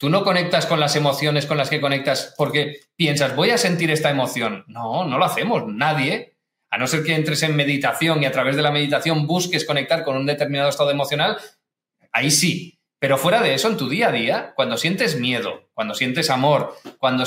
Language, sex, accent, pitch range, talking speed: English, male, Spanish, 140-175 Hz, 210 wpm